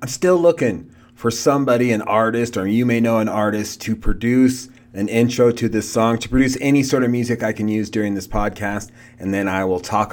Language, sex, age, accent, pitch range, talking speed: English, male, 30-49, American, 95-120 Hz, 220 wpm